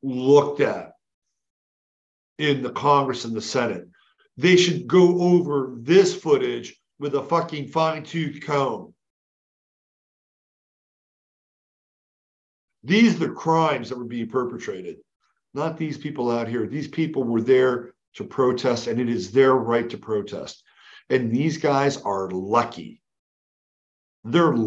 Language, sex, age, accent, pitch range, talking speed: English, male, 50-69, American, 120-160 Hz, 125 wpm